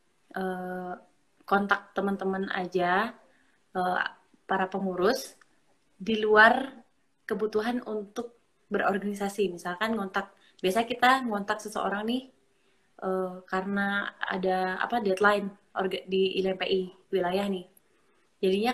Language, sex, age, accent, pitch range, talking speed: Indonesian, female, 20-39, native, 185-215 Hz, 85 wpm